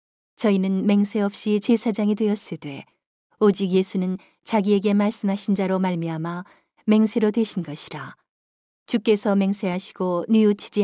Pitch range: 185-215 Hz